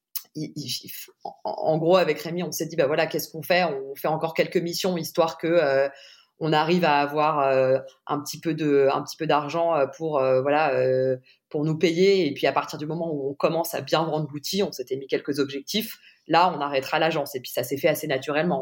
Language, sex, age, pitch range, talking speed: French, female, 20-39, 145-175 Hz, 220 wpm